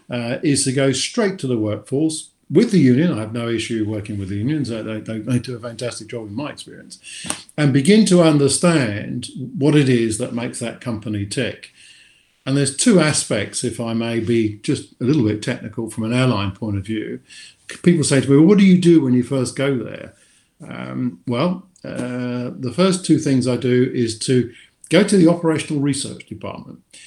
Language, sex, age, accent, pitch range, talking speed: English, male, 50-69, British, 110-135 Hz, 200 wpm